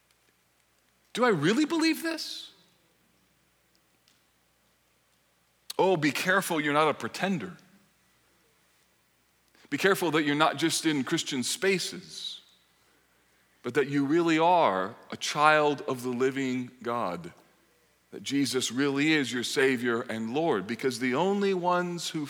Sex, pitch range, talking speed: male, 130-175 Hz, 120 wpm